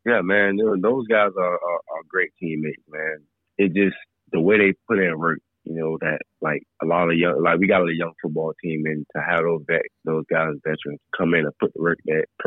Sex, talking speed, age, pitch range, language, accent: male, 220 wpm, 20-39, 80-90 Hz, English, American